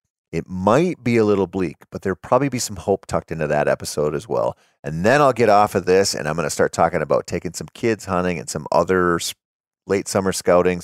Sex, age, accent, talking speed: male, 40-59, American, 235 wpm